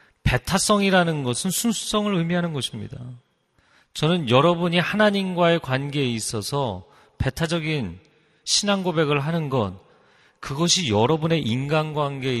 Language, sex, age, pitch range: Korean, male, 40-59, 110-165 Hz